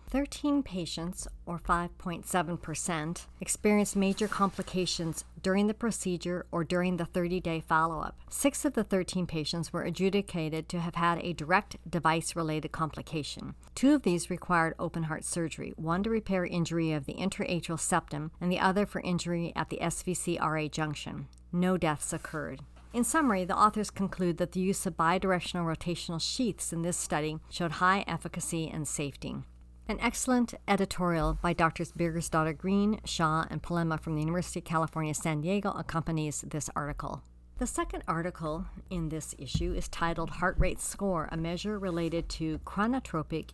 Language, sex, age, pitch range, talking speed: English, male, 50-69, 160-190 Hz, 155 wpm